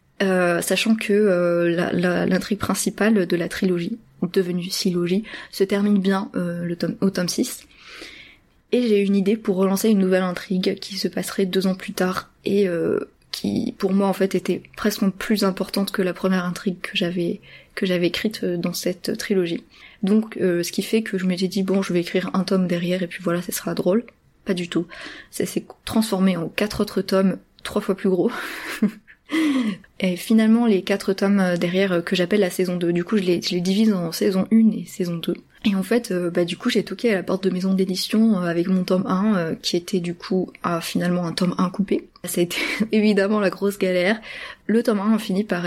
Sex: female